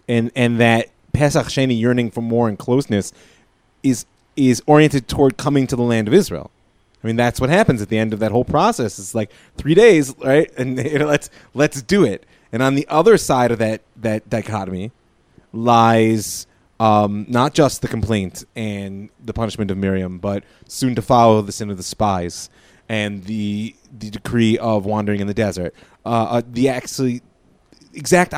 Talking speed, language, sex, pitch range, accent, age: 180 wpm, English, male, 100-130 Hz, American, 30-49